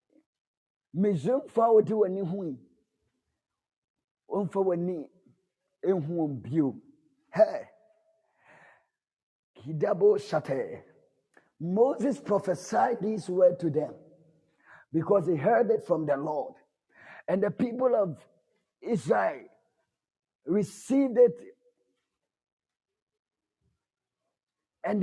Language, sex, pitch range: English, male, 190-275 Hz